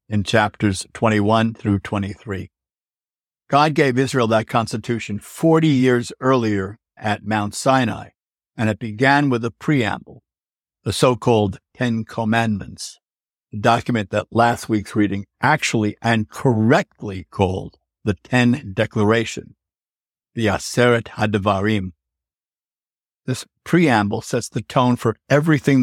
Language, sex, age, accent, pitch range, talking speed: English, male, 60-79, American, 105-130 Hz, 115 wpm